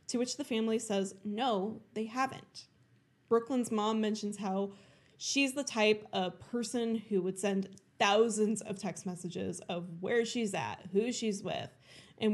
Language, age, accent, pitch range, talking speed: English, 10-29, American, 185-225 Hz, 155 wpm